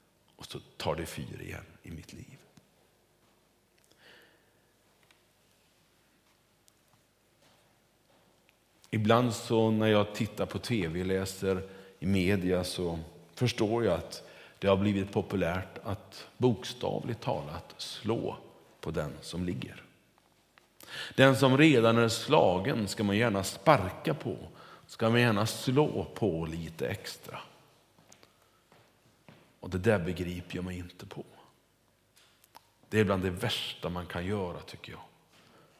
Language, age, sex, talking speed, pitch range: Swedish, 50-69, male, 120 wpm, 95-125 Hz